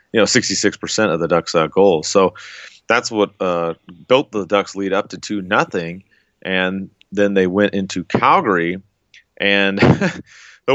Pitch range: 90-110 Hz